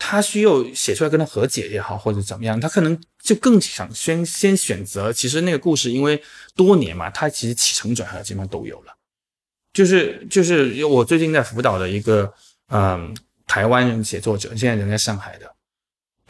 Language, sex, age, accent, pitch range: Chinese, male, 20-39, native, 105-150 Hz